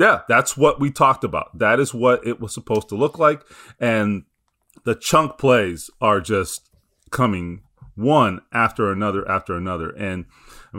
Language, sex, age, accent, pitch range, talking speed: English, male, 30-49, American, 105-135 Hz, 160 wpm